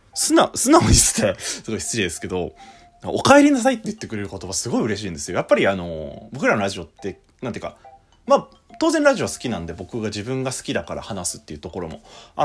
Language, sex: Japanese, male